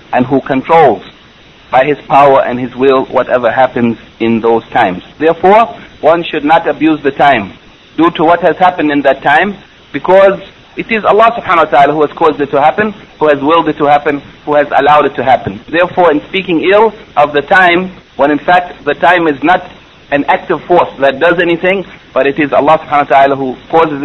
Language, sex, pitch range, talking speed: English, male, 130-160 Hz, 205 wpm